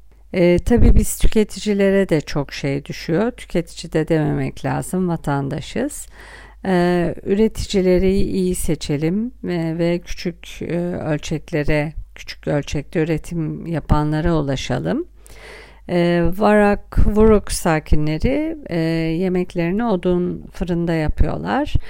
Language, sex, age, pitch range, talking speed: Turkish, female, 50-69, 155-195 Hz, 95 wpm